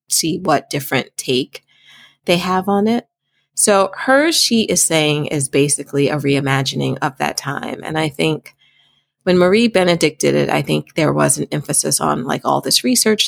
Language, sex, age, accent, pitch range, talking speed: English, female, 30-49, American, 140-175 Hz, 175 wpm